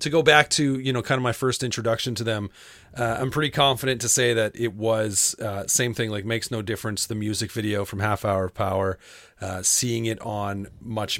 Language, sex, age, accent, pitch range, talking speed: English, male, 30-49, American, 105-125 Hz, 225 wpm